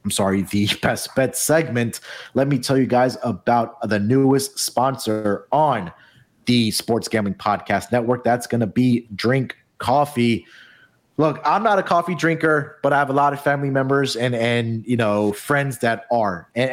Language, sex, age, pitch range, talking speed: English, male, 30-49, 115-140 Hz, 175 wpm